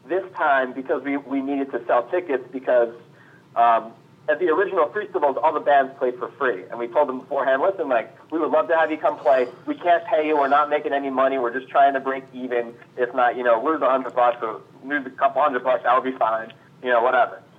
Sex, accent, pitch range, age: male, American, 125-155 Hz, 40-59